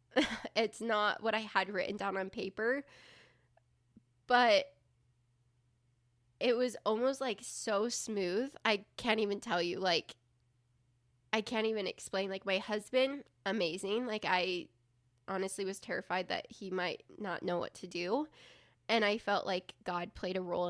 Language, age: English, 10-29